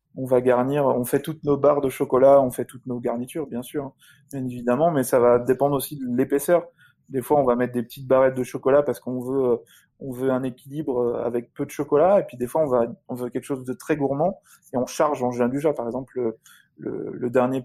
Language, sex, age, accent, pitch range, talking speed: French, male, 20-39, French, 125-145 Hz, 250 wpm